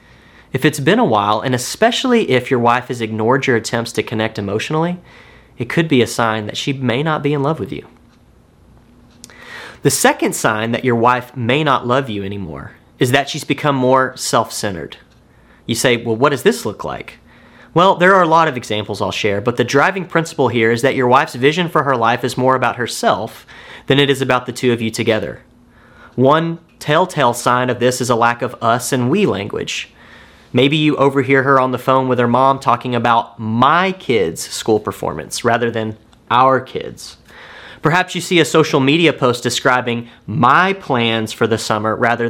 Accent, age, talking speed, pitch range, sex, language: American, 30-49, 195 wpm, 115-145 Hz, male, English